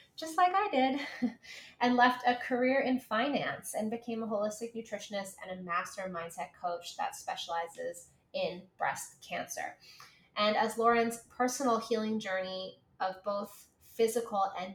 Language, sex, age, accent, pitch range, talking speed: English, female, 20-39, American, 190-245 Hz, 140 wpm